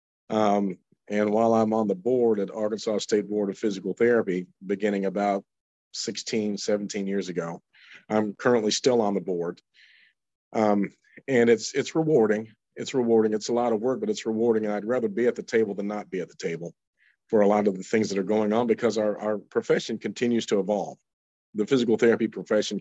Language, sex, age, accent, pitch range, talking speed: English, male, 40-59, American, 100-115 Hz, 195 wpm